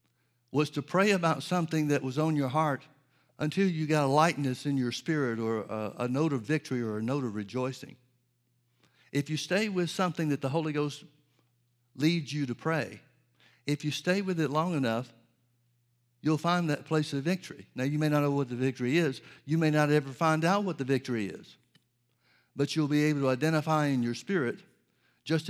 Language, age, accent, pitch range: English, 60-79, American, 120-150 Hz